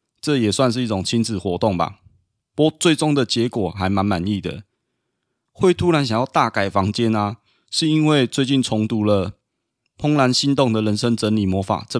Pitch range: 100-125 Hz